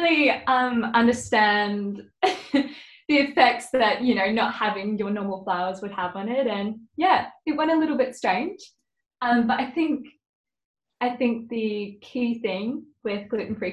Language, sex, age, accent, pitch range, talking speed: English, female, 10-29, Australian, 190-240 Hz, 155 wpm